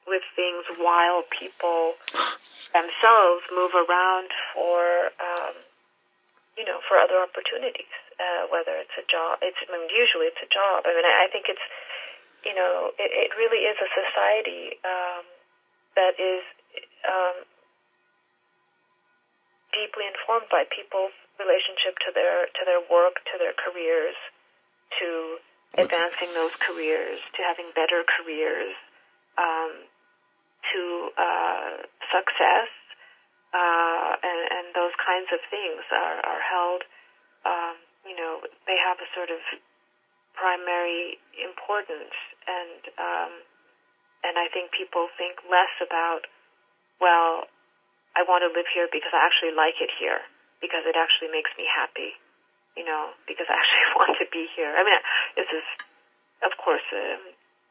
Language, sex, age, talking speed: English, female, 30-49, 135 wpm